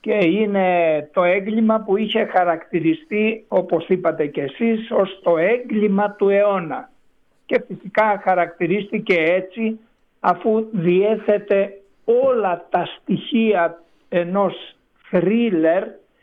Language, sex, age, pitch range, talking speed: Greek, male, 60-79, 175-225 Hz, 100 wpm